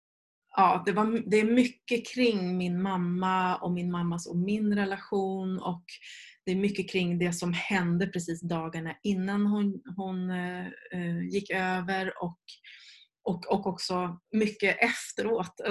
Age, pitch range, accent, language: 30-49, 180-210 Hz, Swedish, English